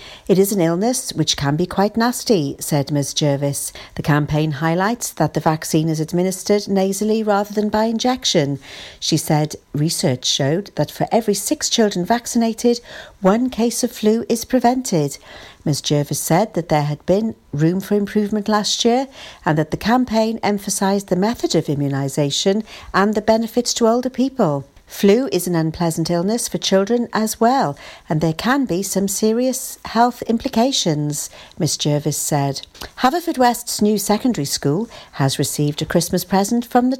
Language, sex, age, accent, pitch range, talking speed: English, female, 60-79, British, 155-230 Hz, 160 wpm